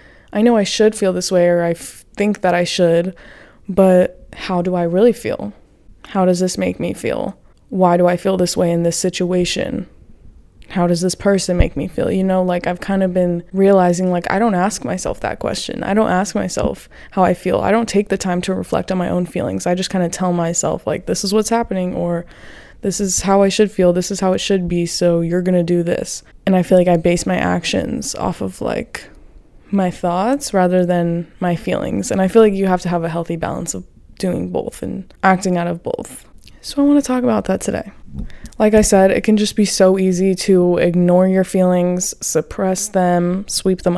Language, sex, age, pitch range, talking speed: English, female, 20-39, 175-200 Hz, 225 wpm